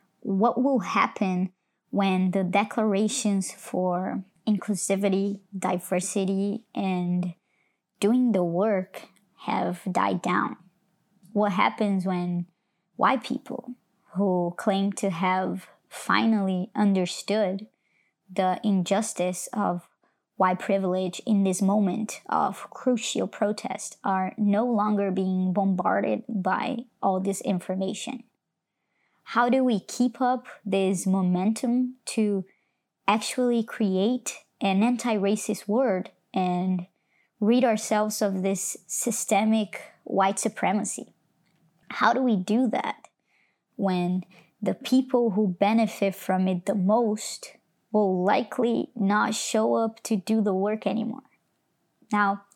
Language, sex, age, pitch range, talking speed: English, male, 20-39, 190-225 Hz, 105 wpm